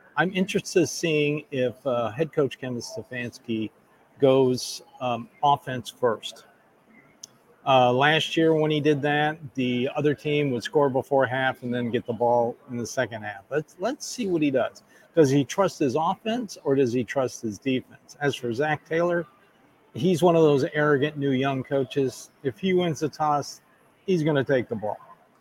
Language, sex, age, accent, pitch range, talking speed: English, male, 50-69, American, 125-155 Hz, 180 wpm